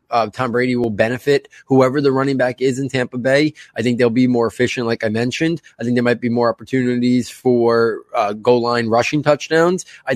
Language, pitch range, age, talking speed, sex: English, 120-135 Hz, 20-39, 215 wpm, male